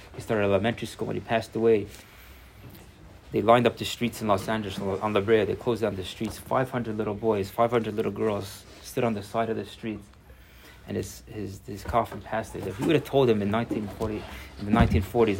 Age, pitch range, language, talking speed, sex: 30-49, 100-125 Hz, English, 220 wpm, male